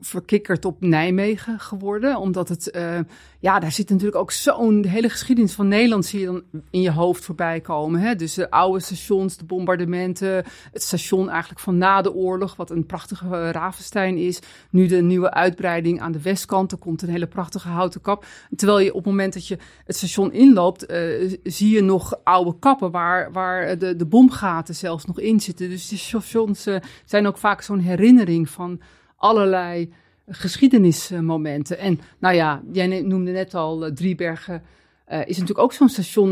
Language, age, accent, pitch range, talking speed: Dutch, 30-49, Dutch, 175-205 Hz, 185 wpm